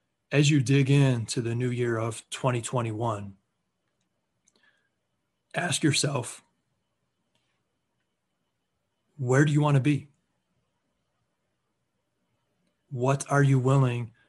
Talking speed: 90 wpm